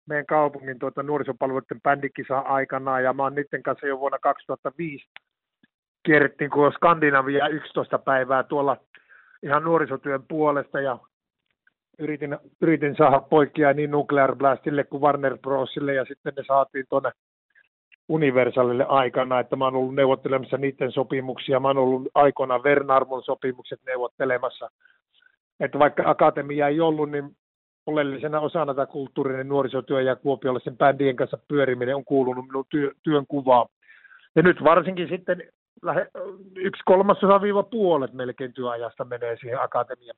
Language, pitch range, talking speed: Finnish, 135-160 Hz, 125 wpm